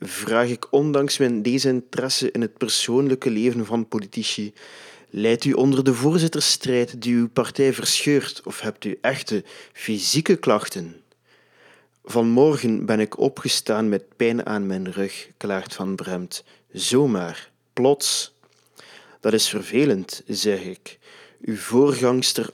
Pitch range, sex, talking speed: 110-135 Hz, male, 130 wpm